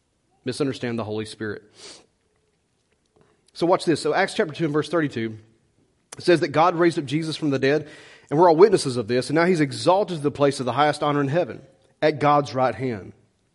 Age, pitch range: 30-49, 135-175 Hz